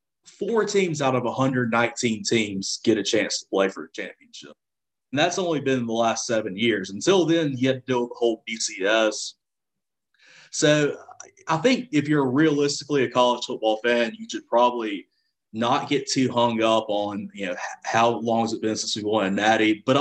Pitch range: 110-150 Hz